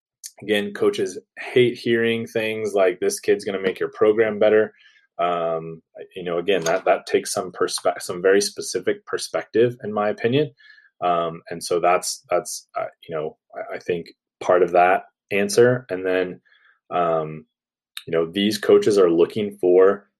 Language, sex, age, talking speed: English, male, 20-39, 160 wpm